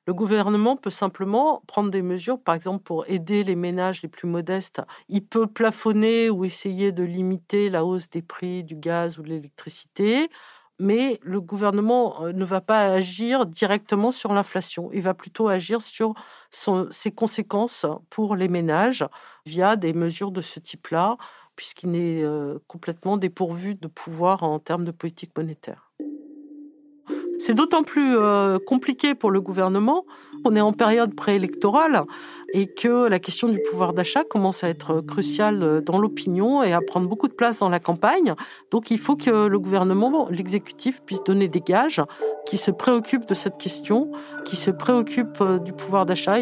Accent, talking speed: French, 165 wpm